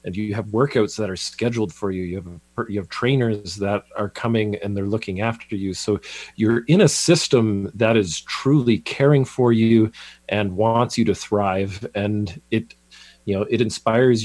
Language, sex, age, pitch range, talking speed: English, male, 40-59, 100-120 Hz, 185 wpm